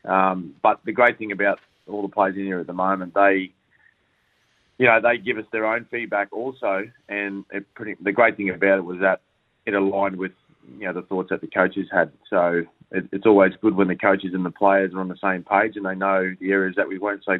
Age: 30-49